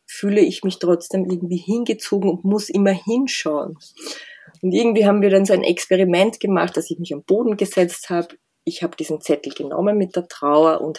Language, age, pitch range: German, 20-39, 160-195 Hz